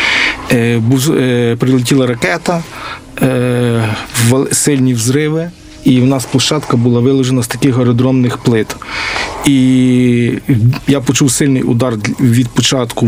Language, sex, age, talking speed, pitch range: Ukrainian, male, 40-59, 95 wpm, 120-140 Hz